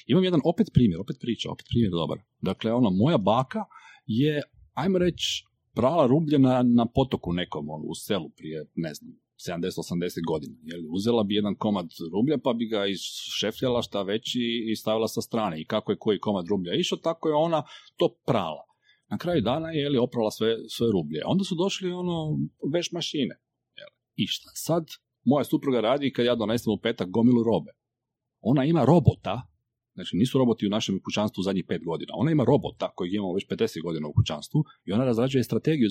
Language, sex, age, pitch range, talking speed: Croatian, male, 40-59, 110-170 Hz, 185 wpm